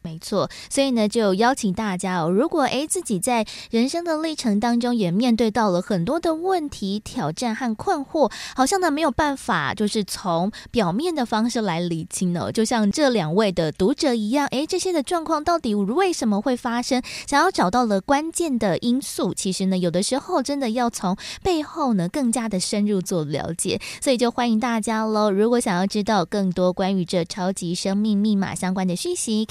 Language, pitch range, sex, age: Chinese, 190-265 Hz, female, 20-39